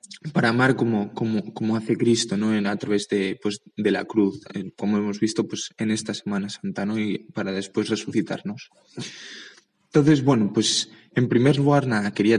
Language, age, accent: Spanish, 20-39, Spanish